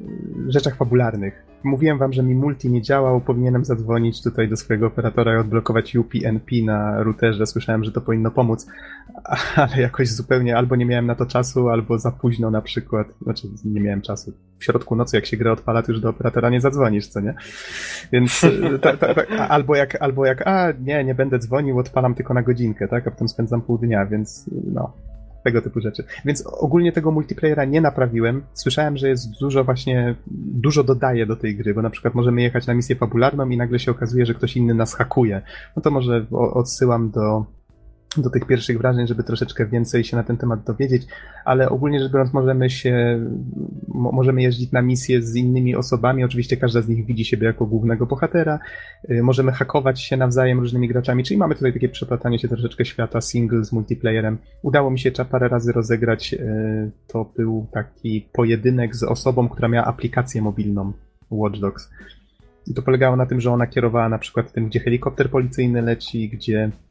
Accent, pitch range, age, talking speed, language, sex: native, 115-130 Hz, 30-49, 190 wpm, Polish, male